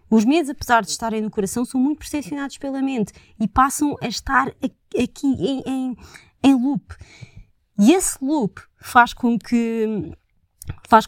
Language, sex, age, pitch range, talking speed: Portuguese, female, 20-39, 195-255 Hz, 150 wpm